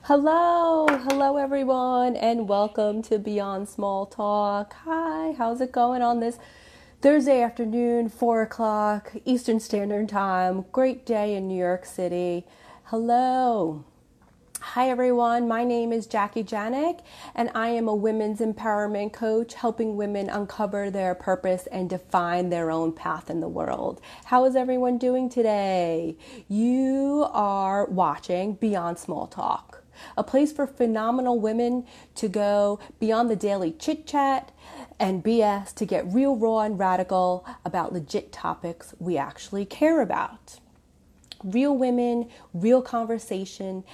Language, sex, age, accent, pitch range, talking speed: English, female, 30-49, American, 195-245 Hz, 135 wpm